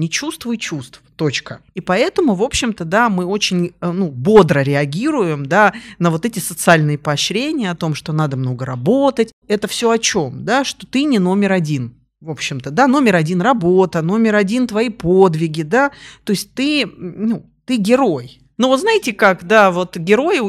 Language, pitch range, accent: Russian, 160-215 Hz, native